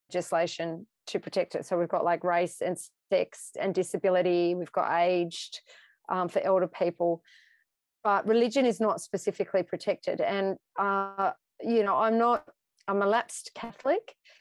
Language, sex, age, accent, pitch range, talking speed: English, female, 30-49, Australian, 180-220 Hz, 150 wpm